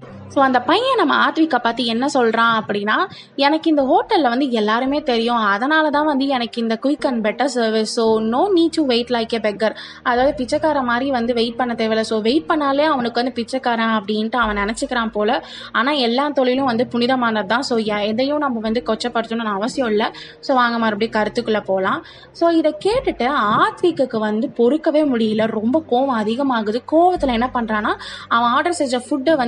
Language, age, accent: Tamil, 20-39, native